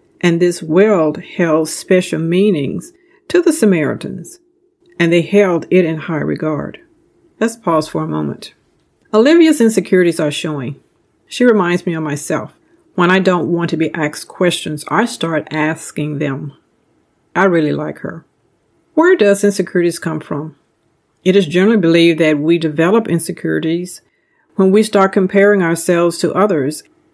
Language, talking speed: English, 145 wpm